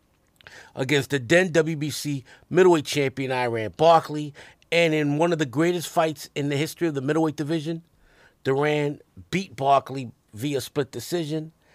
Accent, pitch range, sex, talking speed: American, 125-160 Hz, male, 145 wpm